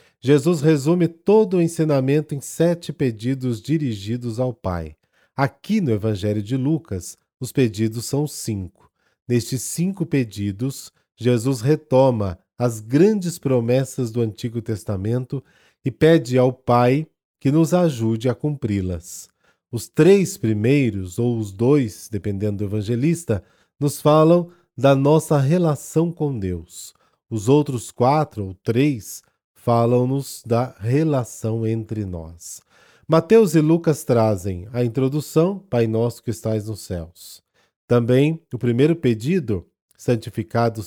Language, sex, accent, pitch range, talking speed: Portuguese, male, Brazilian, 110-150 Hz, 120 wpm